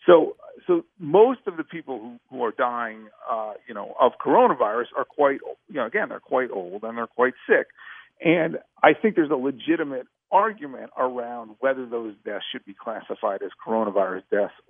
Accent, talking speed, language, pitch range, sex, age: American, 180 wpm, English, 110-185 Hz, male, 50-69